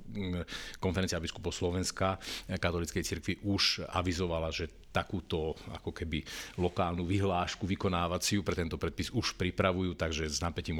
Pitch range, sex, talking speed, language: 85-100 Hz, male, 120 wpm, Slovak